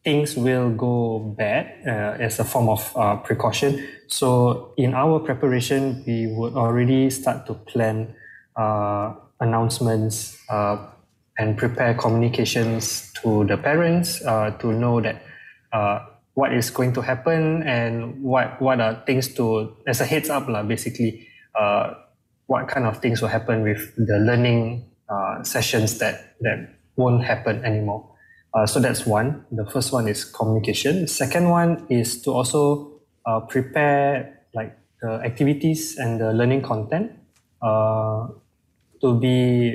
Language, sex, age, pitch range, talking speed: English, male, 20-39, 110-135 Hz, 145 wpm